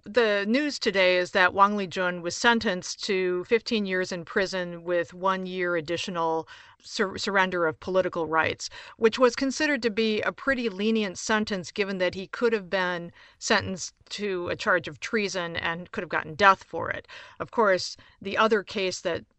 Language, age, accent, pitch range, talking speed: English, 50-69, American, 175-210 Hz, 175 wpm